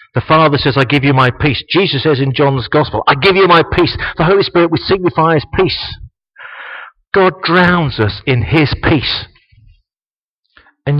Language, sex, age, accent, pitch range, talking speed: English, male, 40-59, British, 110-155 Hz, 170 wpm